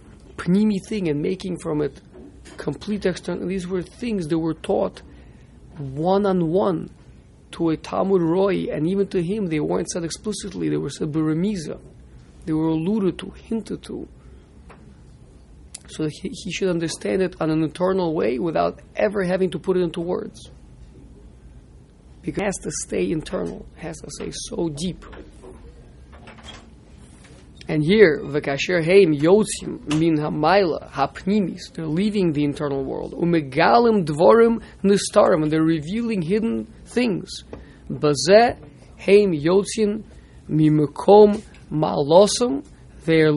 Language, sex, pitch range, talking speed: English, male, 145-190 Hz, 120 wpm